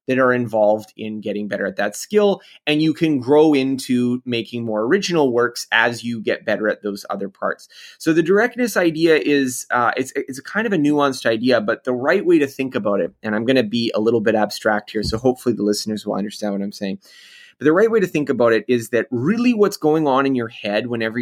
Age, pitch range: 20-39, 115-150 Hz